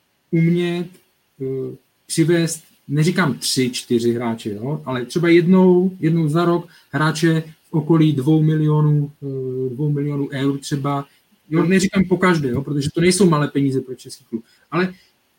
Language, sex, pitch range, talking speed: Czech, male, 135-170 Hz, 145 wpm